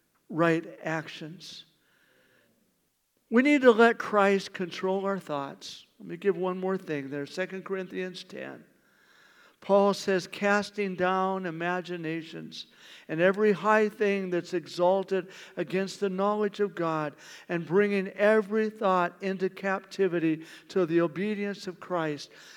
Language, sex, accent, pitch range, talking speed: English, male, American, 155-195 Hz, 125 wpm